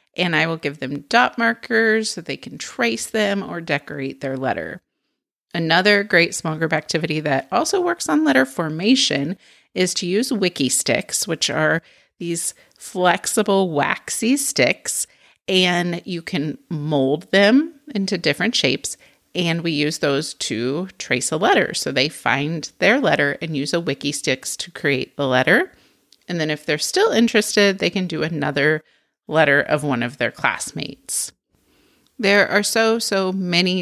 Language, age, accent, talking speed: English, 30-49, American, 160 wpm